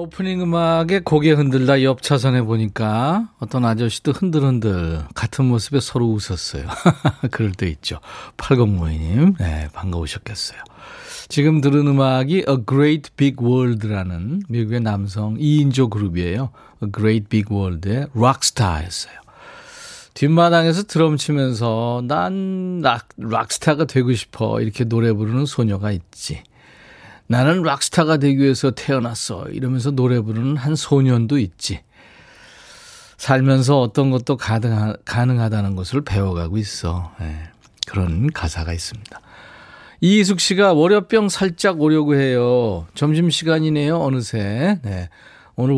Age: 40-59